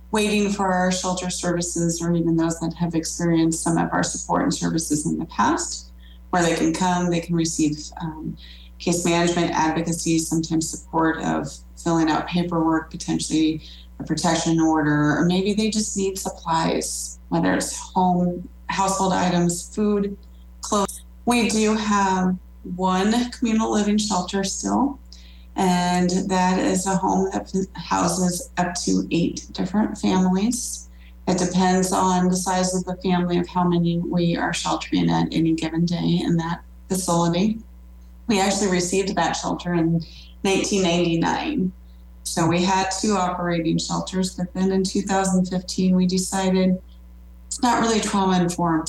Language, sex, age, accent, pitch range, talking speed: English, female, 30-49, American, 155-185 Hz, 145 wpm